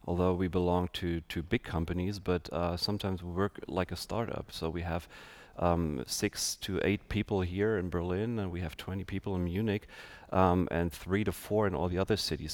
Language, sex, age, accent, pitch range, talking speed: English, male, 30-49, German, 85-100 Hz, 205 wpm